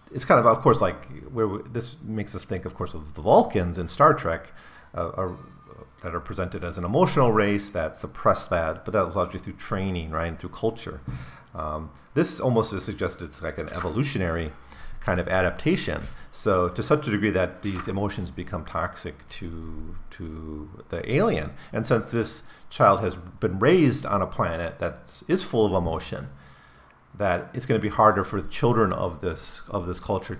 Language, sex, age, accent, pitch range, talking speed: English, male, 40-59, American, 85-110 Hz, 190 wpm